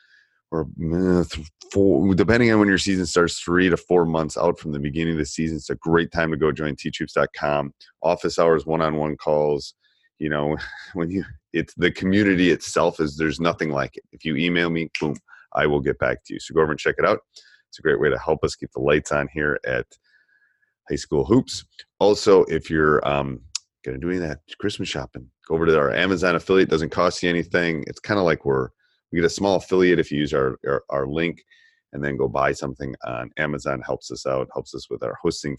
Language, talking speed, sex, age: English, 220 wpm, male, 30-49